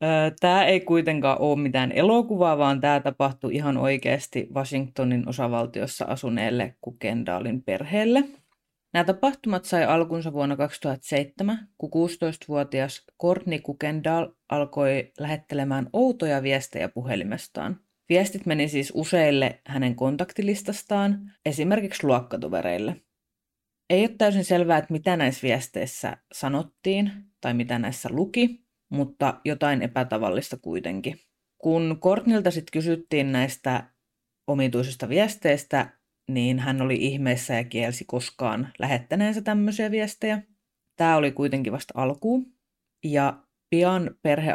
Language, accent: Finnish, native